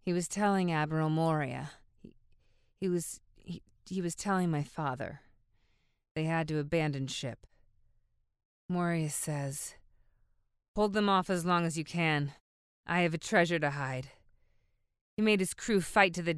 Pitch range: 145-200 Hz